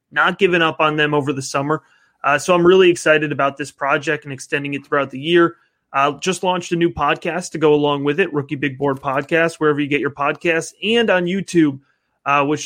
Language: English